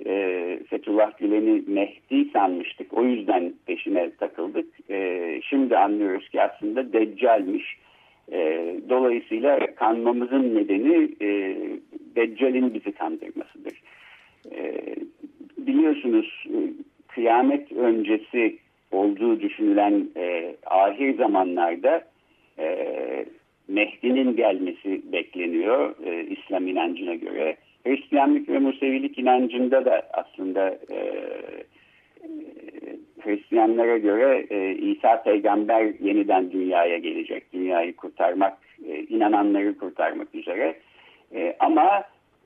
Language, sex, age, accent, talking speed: Turkish, male, 60-79, native, 70 wpm